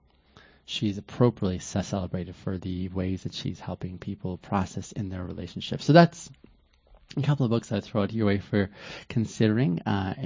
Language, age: English, 30-49